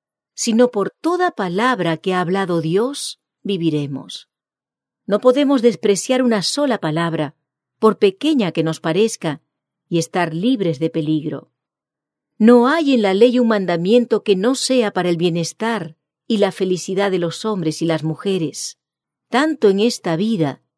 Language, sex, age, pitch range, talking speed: English, female, 40-59, 160-220 Hz, 145 wpm